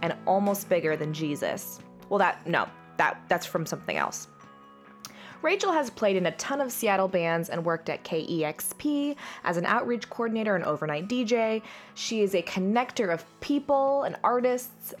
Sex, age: female, 20-39